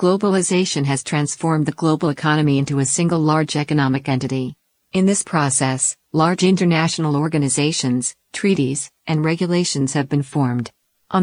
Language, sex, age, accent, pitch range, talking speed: English, female, 50-69, American, 140-170 Hz, 135 wpm